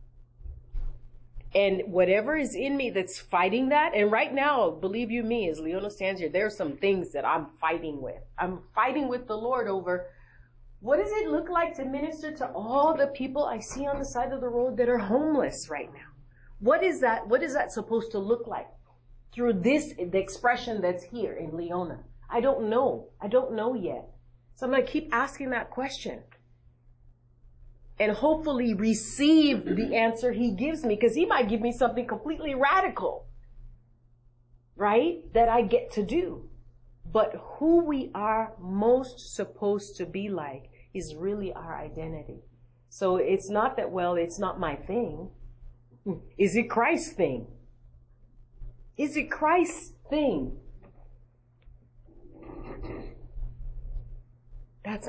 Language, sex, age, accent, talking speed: English, female, 30-49, American, 155 wpm